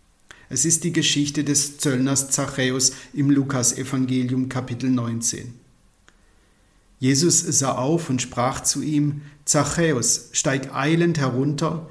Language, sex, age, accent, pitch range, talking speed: German, male, 50-69, German, 130-155 Hz, 110 wpm